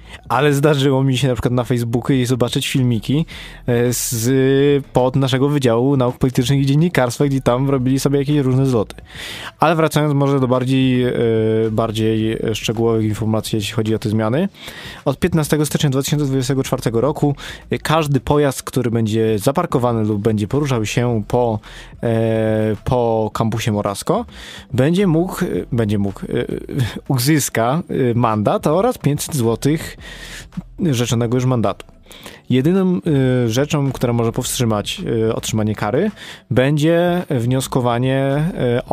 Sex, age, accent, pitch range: male, 20-39, native, 115-140 Hz